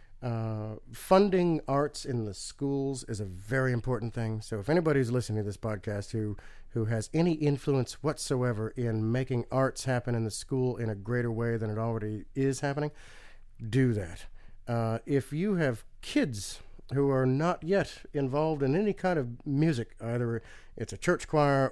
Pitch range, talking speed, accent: 110-140 Hz, 170 wpm, American